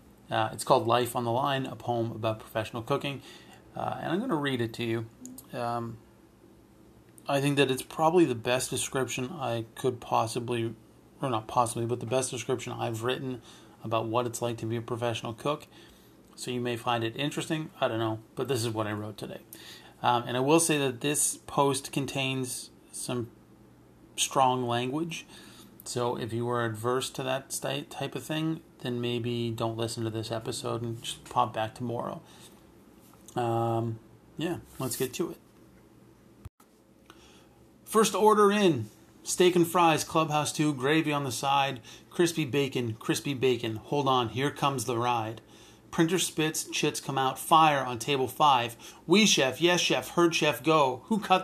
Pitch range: 115-145 Hz